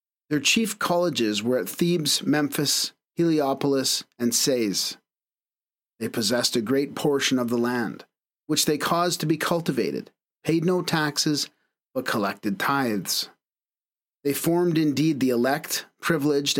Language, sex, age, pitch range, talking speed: English, male, 40-59, 130-160 Hz, 130 wpm